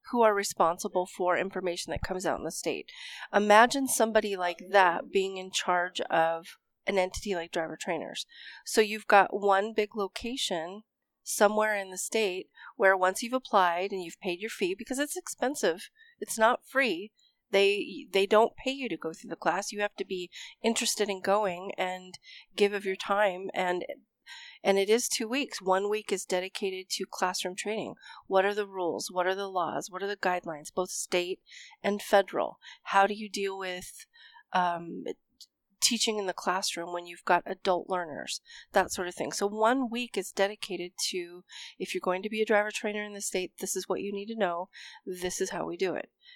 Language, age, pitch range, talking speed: English, 30-49, 185-220 Hz, 195 wpm